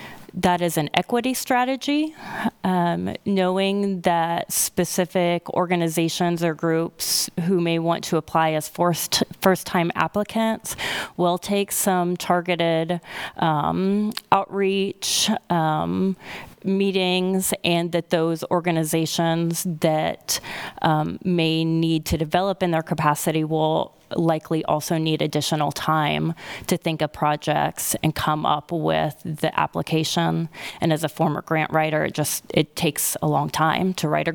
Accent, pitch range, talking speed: American, 160-190 Hz, 125 wpm